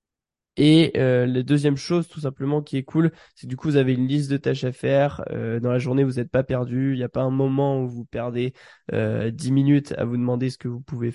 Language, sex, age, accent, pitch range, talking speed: French, male, 20-39, French, 120-140 Hz, 260 wpm